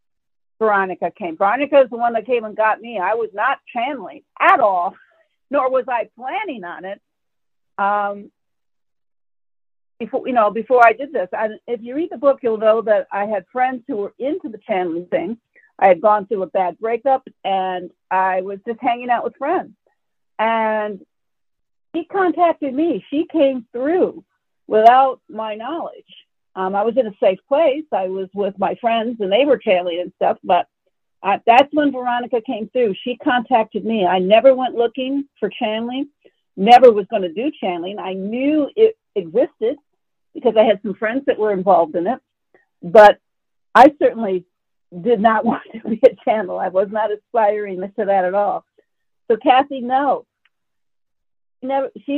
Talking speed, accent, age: 170 wpm, American, 50-69